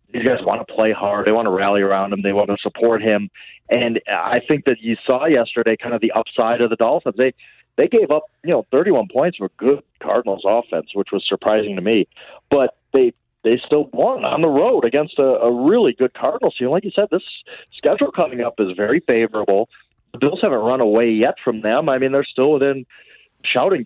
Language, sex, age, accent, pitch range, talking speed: English, male, 40-59, American, 110-145 Hz, 220 wpm